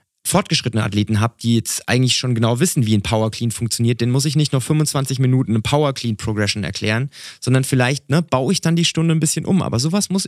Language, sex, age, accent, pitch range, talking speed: German, male, 30-49, German, 105-135 Hz, 235 wpm